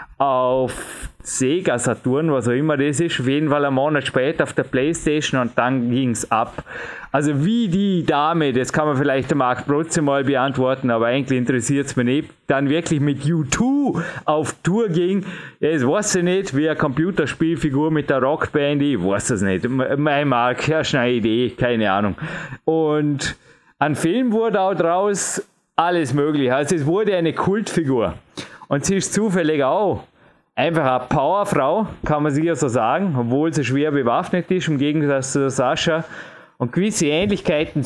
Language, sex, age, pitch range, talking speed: German, male, 30-49, 135-170 Hz, 170 wpm